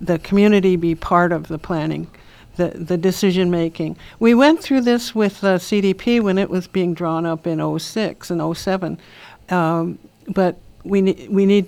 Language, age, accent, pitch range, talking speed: English, 60-79, American, 170-195 Hz, 170 wpm